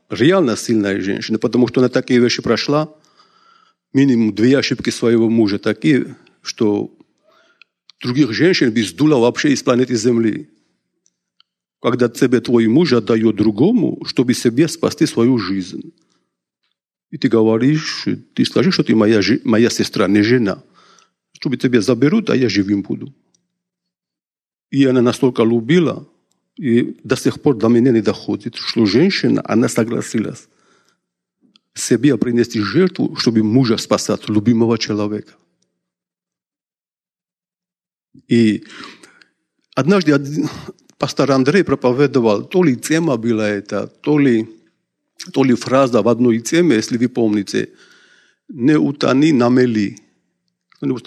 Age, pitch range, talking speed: 50-69, 115-145 Hz, 120 wpm